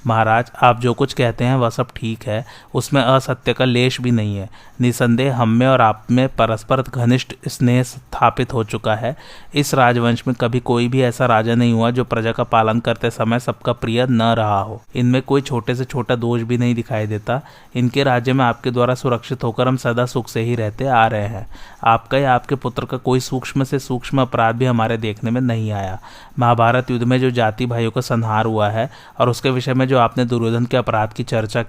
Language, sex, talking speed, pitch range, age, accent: Hindi, male, 215 wpm, 115-130 Hz, 30-49, native